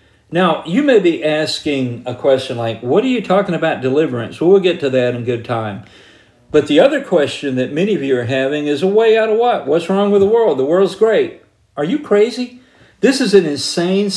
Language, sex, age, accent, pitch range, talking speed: English, male, 50-69, American, 130-205 Hz, 225 wpm